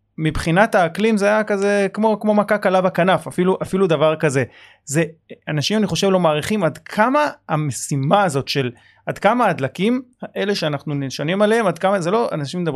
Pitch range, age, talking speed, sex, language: 140-185 Hz, 30-49, 175 wpm, male, Hebrew